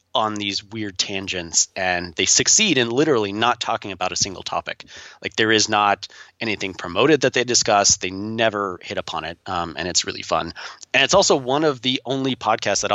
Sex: male